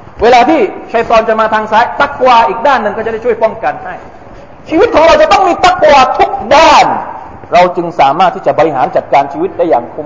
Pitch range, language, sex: 180-265 Hz, Thai, male